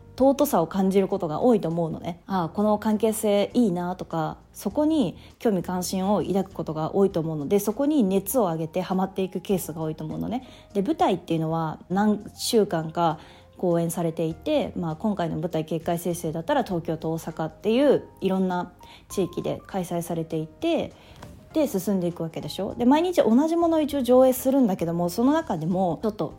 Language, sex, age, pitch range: Japanese, female, 20-39, 170-230 Hz